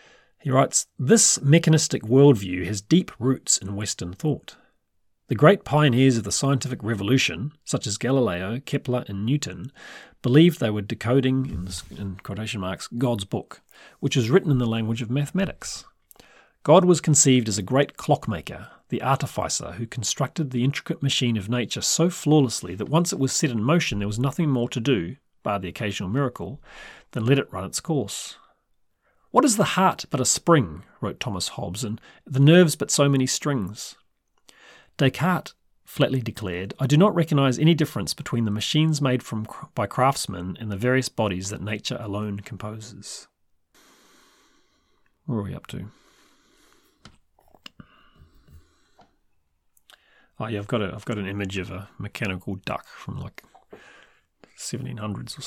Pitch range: 105-145 Hz